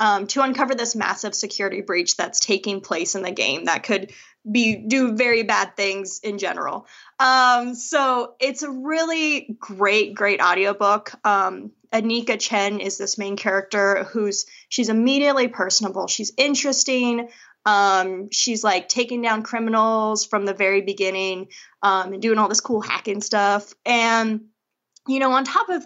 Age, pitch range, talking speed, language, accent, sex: 10-29, 200-235 Hz, 155 wpm, English, American, female